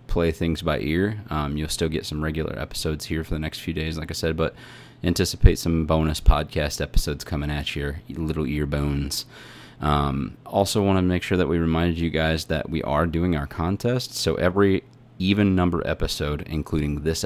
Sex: male